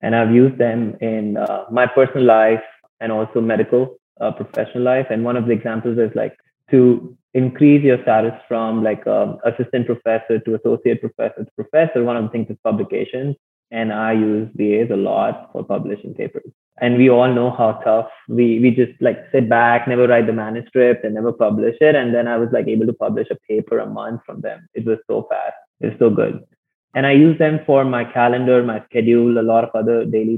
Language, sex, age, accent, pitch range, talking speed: English, male, 20-39, Indian, 110-125 Hz, 210 wpm